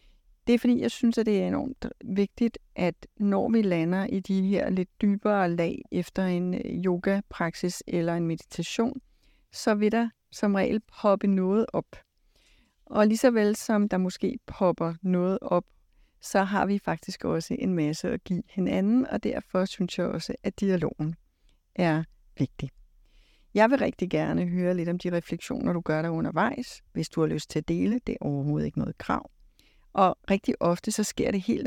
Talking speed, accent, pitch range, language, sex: 180 wpm, native, 170-215 Hz, Danish, female